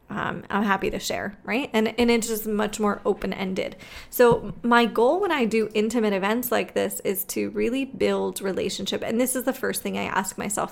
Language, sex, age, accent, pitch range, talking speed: English, female, 20-39, American, 200-235 Hz, 205 wpm